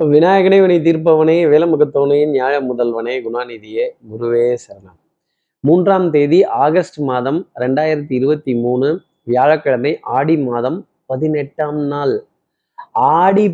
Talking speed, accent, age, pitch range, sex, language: 95 wpm, native, 30-49, 140-185 Hz, male, Tamil